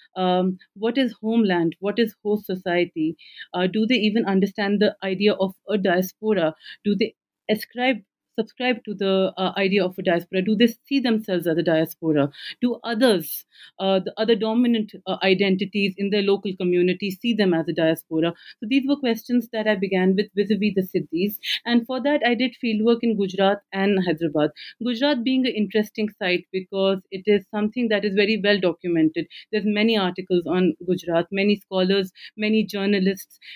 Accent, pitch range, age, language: Indian, 180-215 Hz, 40-59, English